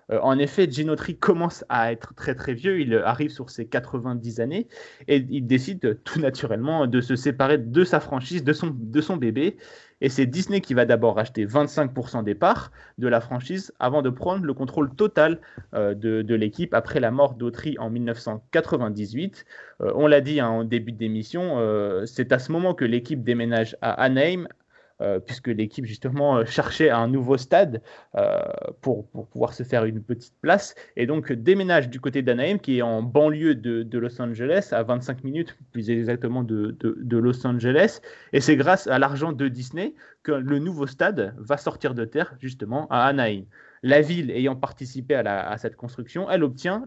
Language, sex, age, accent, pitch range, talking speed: French, male, 30-49, French, 120-150 Hz, 190 wpm